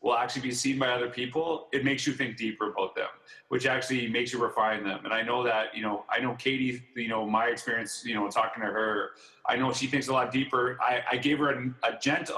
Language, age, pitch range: English, 30-49, 120-155 Hz